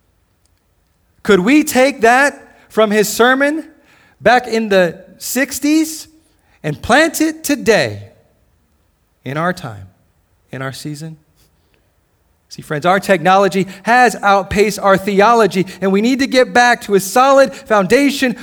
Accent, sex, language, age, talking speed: American, male, English, 40-59, 125 wpm